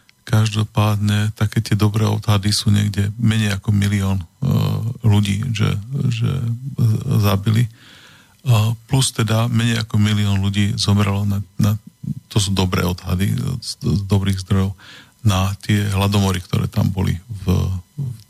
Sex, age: male, 40-59